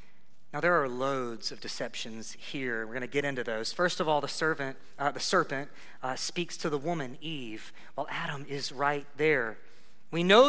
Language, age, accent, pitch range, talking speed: English, 30-49, American, 175-230 Hz, 195 wpm